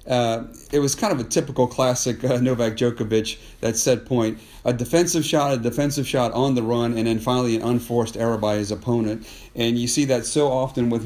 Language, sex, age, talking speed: English, male, 50-69, 205 wpm